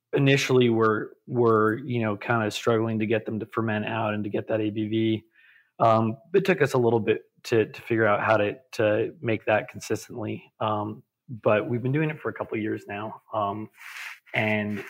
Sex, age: male, 30-49